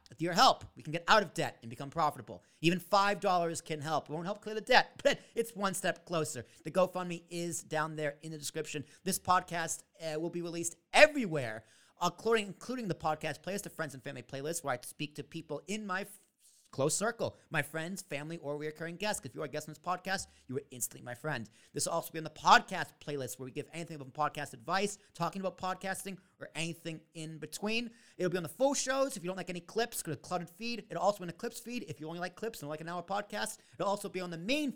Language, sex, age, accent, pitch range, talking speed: English, male, 30-49, American, 140-190 Hz, 245 wpm